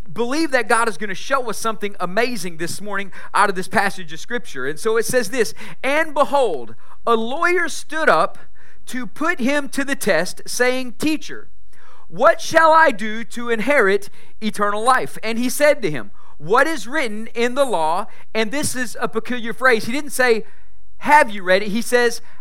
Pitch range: 205-270 Hz